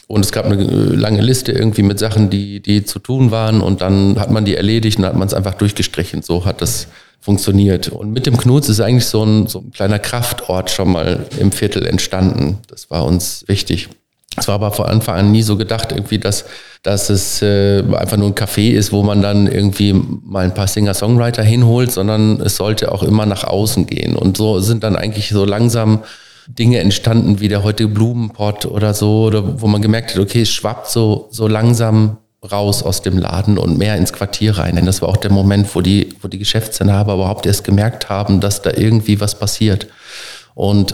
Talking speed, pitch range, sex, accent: 210 wpm, 100-115 Hz, male, German